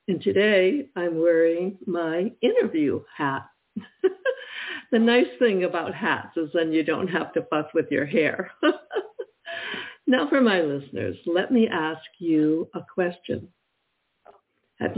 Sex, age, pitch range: female, 60-79, 155-210 Hz